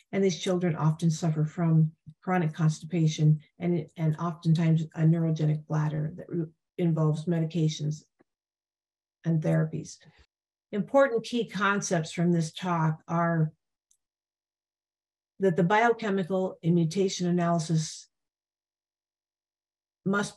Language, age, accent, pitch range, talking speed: English, 50-69, American, 160-185 Hz, 95 wpm